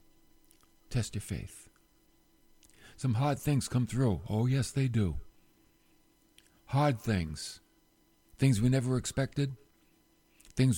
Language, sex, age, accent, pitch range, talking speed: English, male, 50-69, American, 100-140 Hz, 105 wpm